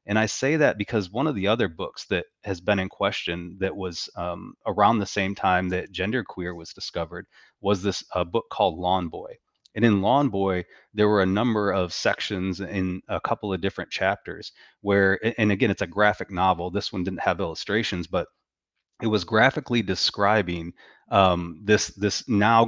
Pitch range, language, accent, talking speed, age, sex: 95-105 Hz, English, American, 185 wpm, 30-49, male